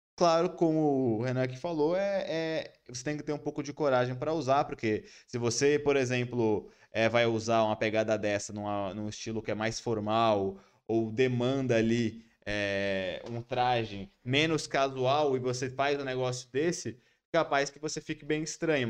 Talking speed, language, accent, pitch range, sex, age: 180 wpm, Portuguese, Brazilian, 115-150 Hz, male, 20-39